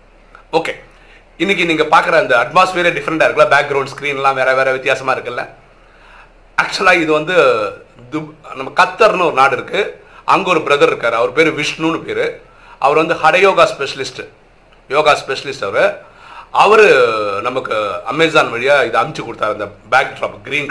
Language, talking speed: Tamil, 50 wpm